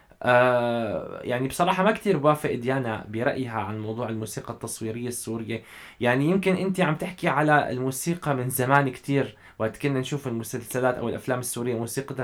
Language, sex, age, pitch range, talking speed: Arabic, male, 20-39, 115-170 Hz, 145 wpm